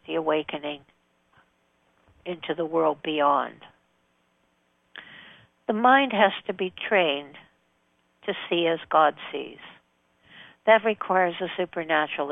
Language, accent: English, American